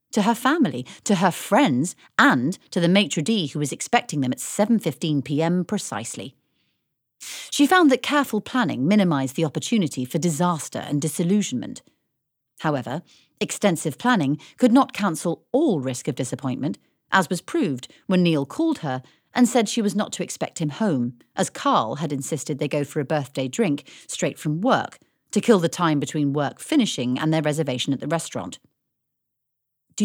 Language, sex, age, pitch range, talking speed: English, female, 40-59, 140-225 Hz, 165 wpm